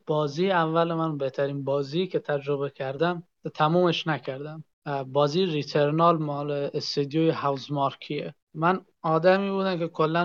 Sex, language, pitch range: male, Persian, 145-165 Hz